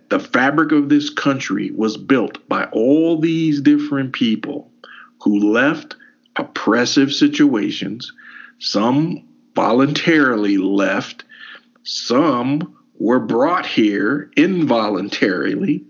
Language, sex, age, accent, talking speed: English, male, 50-69, American, 90 wpm